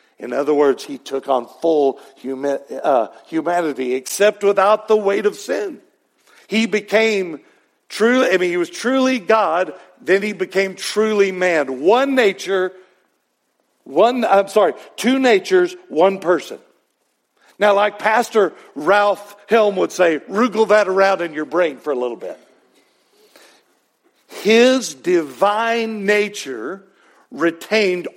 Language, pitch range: English, 175-225 Hz